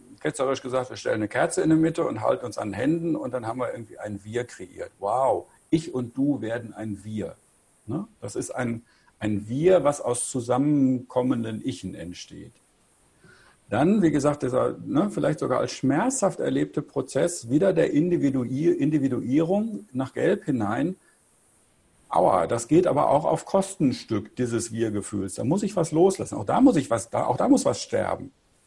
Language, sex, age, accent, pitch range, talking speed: English, male, 60-79, German, 125-175 Hz, 175 wpm